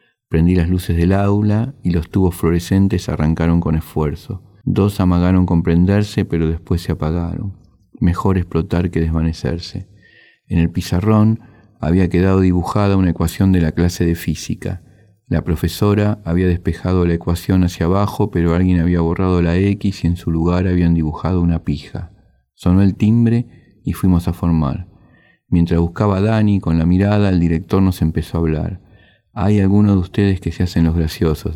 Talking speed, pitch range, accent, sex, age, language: 165 wpm, 85-100 Hz, Argentinian, male, 40-59, Spanish